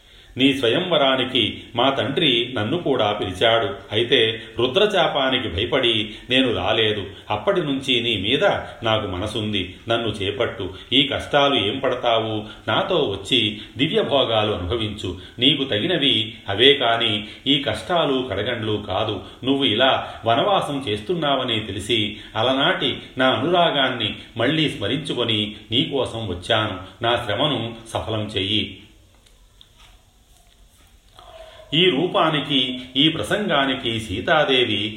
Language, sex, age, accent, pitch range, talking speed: Telugu, male, 40-59, native, 105-130 Hz, 100 wpm